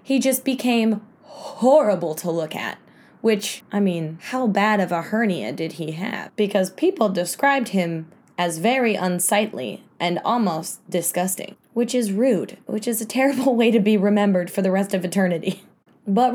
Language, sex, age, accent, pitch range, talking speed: English, female, 20-39, American, 185-245 Hz, 165 wpm